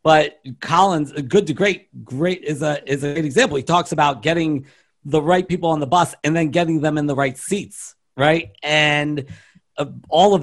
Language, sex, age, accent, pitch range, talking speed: English, male, 50-69, American, 130-160 Hz, 200 wpm